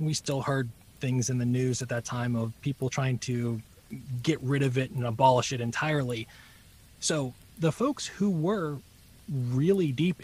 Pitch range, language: 120-170 Hz, English